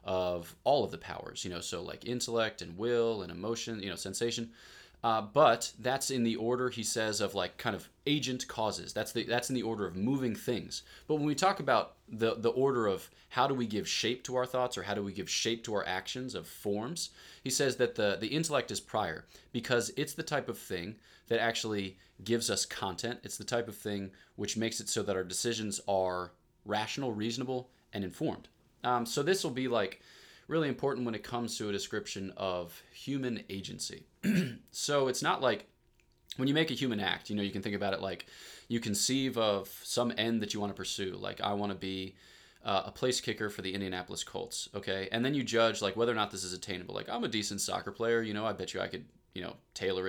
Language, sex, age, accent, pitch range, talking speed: English, male, 20-39, American, 100-125 Hz, 230 wpm